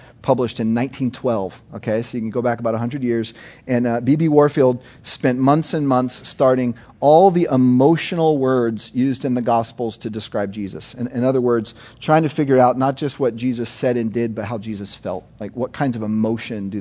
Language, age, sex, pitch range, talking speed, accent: English, 40-59, male, 115-140 Hz, 205 wpm, American